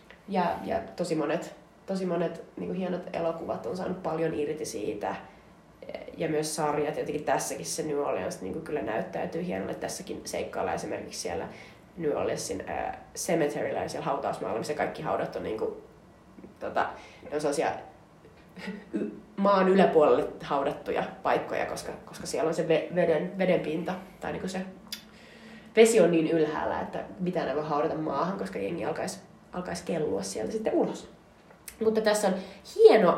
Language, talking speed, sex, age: Finnish, 155 wpm, female, 20-39